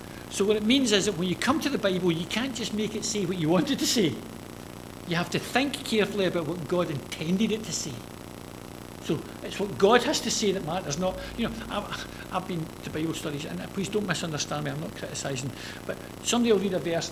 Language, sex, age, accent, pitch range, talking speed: English, male, 60-79, British, 175-235 Hz, 235 wpm